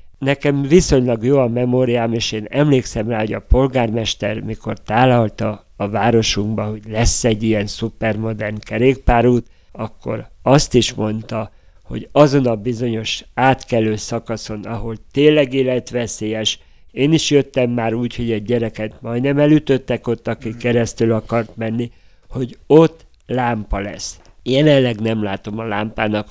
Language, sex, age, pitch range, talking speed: Hungarian, male, 50-69, 110-130 Hz, 135 wpm